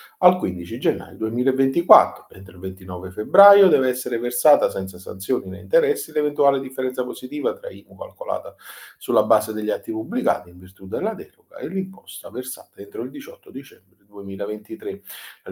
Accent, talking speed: native, 150 wpm